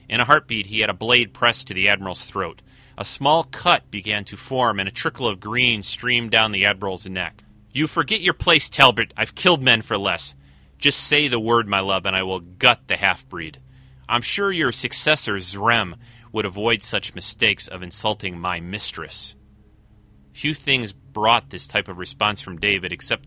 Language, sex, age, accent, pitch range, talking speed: English, male, 30-49, American, 100-145 Hz, 190 wpm